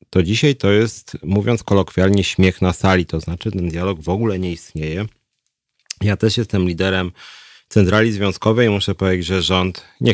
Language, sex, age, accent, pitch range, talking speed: Polish, male, 30-49, native, 95-115 Hz, 165 wpm